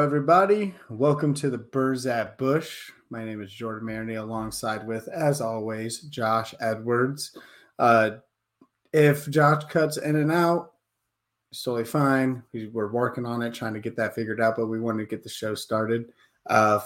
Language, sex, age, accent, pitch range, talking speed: English, male, 30-49, American, 115-140 Hz, 165 wpm